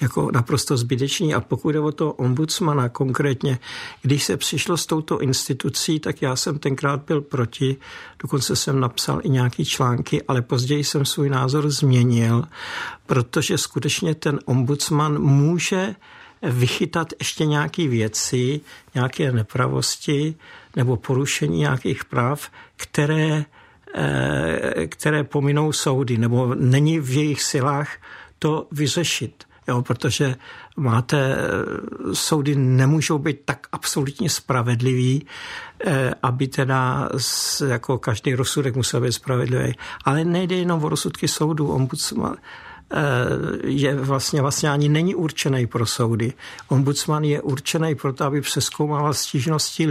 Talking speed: 120 wpm